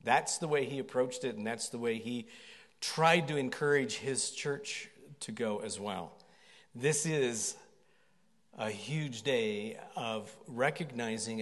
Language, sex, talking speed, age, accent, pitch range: English, male, 140 wpm, 50-69, American, 130-165 Hz